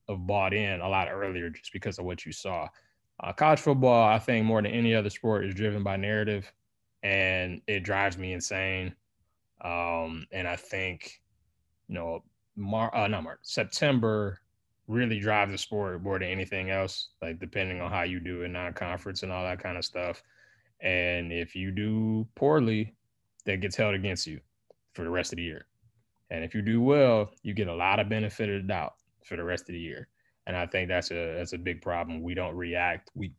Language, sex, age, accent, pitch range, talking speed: English, male, 20-39, American, 85-110 Hz, 205 wpm